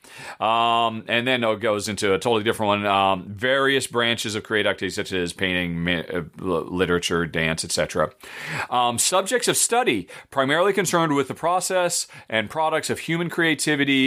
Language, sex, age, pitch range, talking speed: English, male, 40-59, 115-180 Hz, 160 wpm